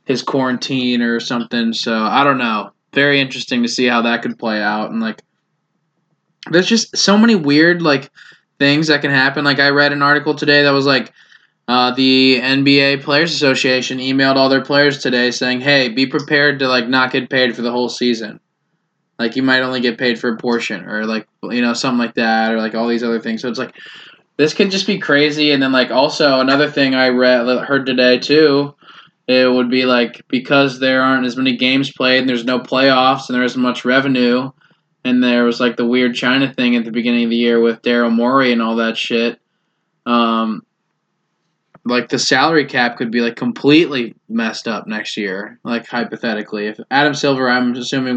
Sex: male